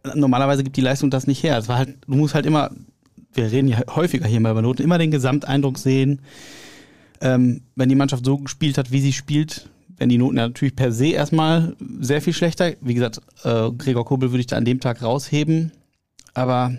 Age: 30-49